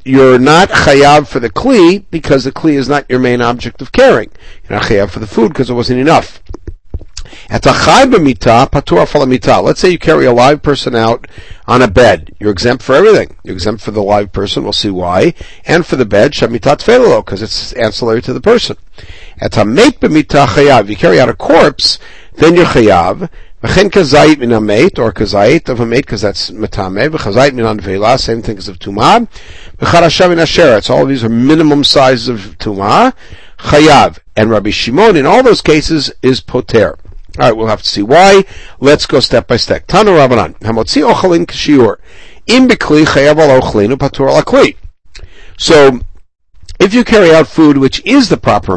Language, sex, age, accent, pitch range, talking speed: English, male, 50-69, American, 105-150 Hz, 175 wpm